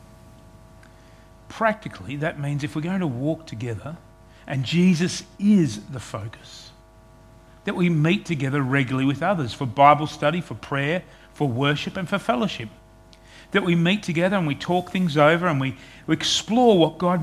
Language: English